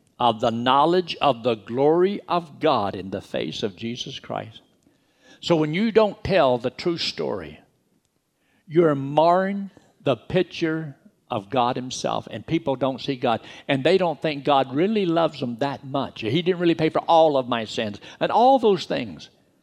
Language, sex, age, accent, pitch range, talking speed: English, male, 60-79, American, 95-145 Hz, 175 wpm